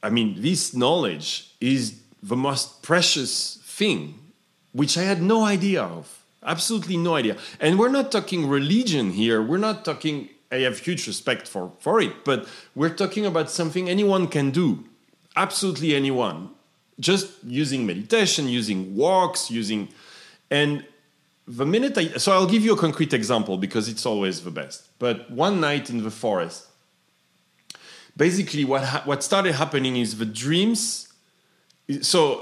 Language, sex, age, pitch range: English, male, 40-59, 115-180 Hz